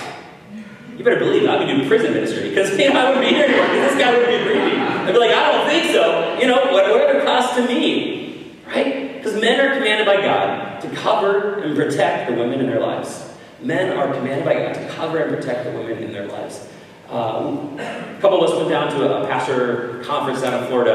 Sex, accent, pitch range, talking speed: male, American, 135-215 Hz, 235 wpm